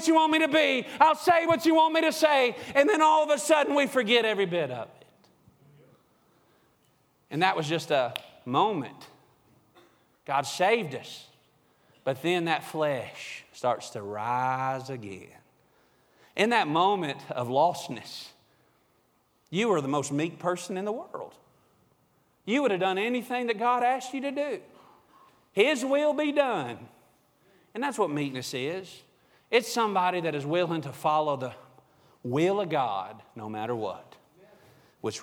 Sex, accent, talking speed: male, American, 155 wpm